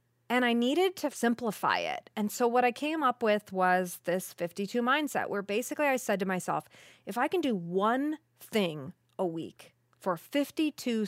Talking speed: 180 wpm